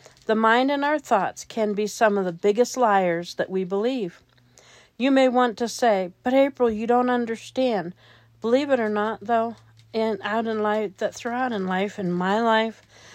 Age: 40-59